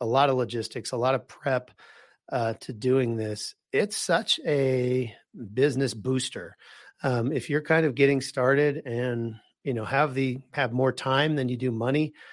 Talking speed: 175 wpm